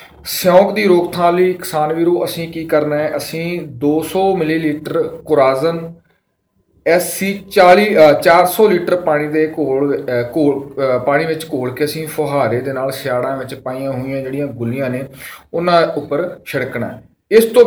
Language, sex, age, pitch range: Punjabi, male, 40-59, 145-175 Hz